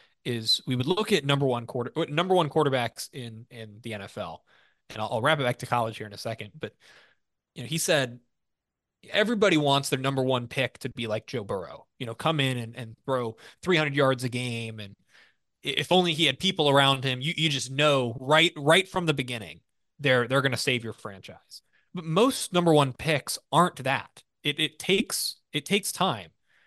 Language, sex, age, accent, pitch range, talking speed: English, male, 20-39, American, 125-170 Hz, 205 wpm